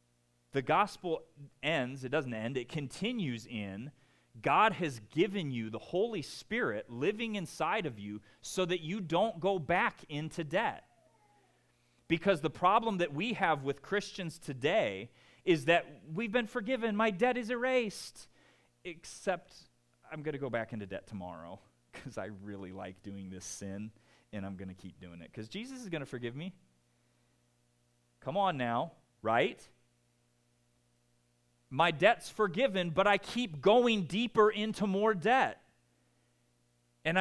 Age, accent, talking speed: 30-49, American, 145 wpm